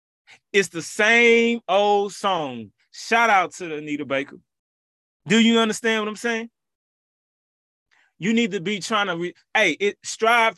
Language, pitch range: English, 190-220 Hz